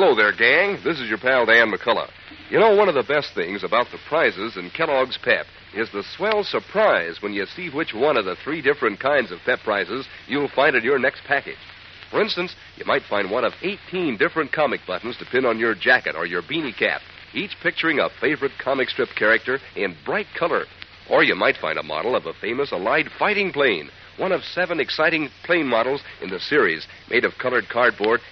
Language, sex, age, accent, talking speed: English, male, 60-79, American, 210 wpm